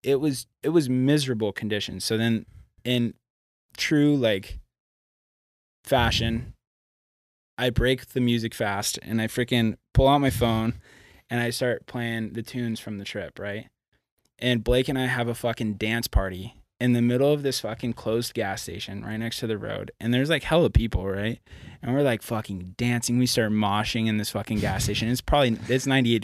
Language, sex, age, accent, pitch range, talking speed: English, male, 20-39, American, 100-120 Hz, 185 wpm